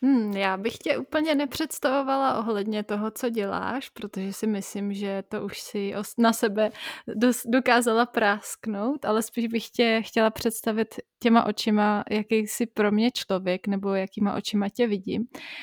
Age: 20-39